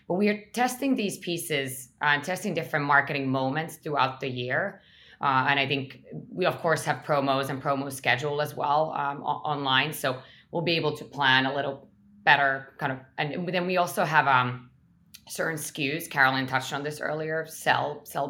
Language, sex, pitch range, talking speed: English, female, 135-165 Hz, 185 wpm